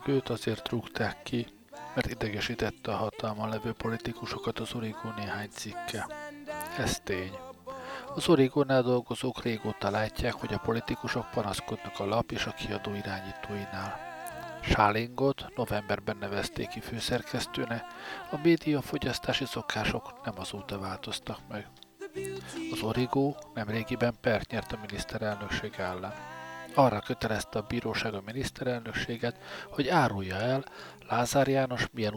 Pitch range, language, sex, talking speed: 105-135 Hz, Hungarian, male, 120 wpm